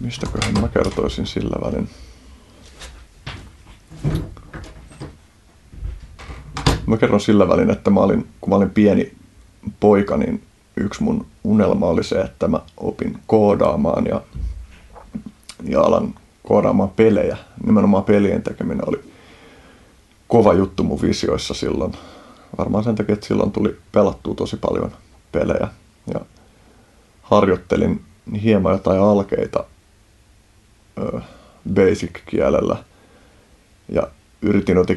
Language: Finnish